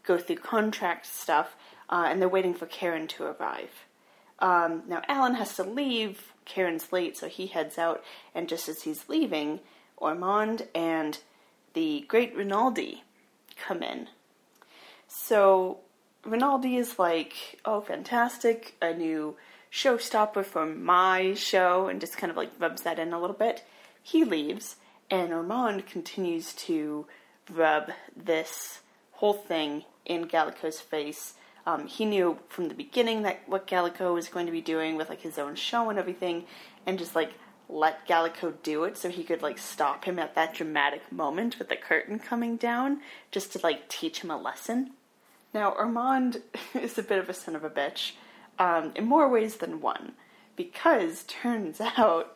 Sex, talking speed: female, 165 wpm